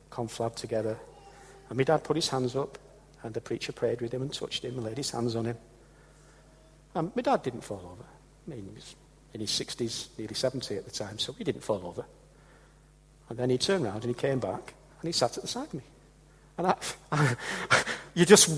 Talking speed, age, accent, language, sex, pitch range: 225 wpm, 60-79, British, English, male, 140-200 Hz